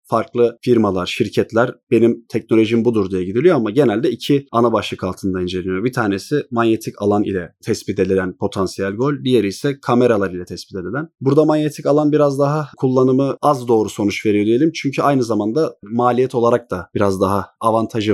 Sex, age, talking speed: male, 30-49, 165 wpm